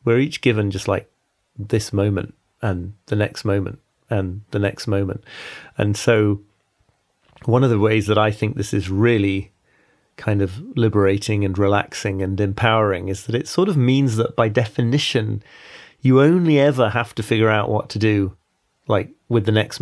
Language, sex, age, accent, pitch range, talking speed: English, male, 30-49, British, 100-115 Hz, 175 wpm